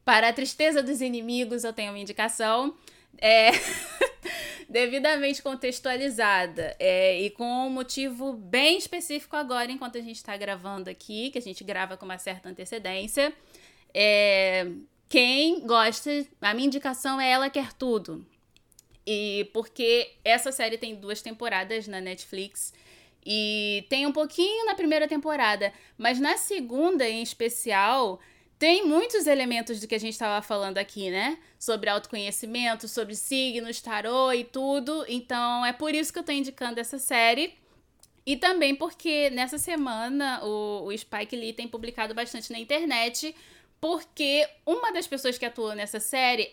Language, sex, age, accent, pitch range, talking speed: Portuguese, female, 20-39, Brazilian, 215-280 Hz, 145 wpm